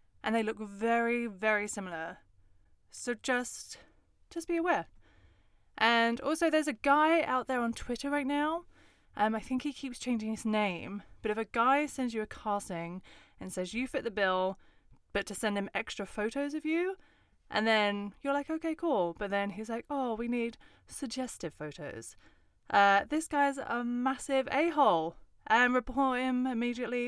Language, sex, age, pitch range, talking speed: English, female, 20-39, 200-255 Hz, 170 wpm